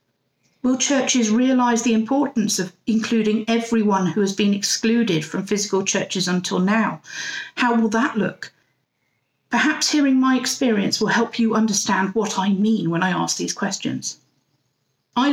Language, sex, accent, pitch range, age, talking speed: English, female, British, 195-240 Hz, 50-69, 150 wpm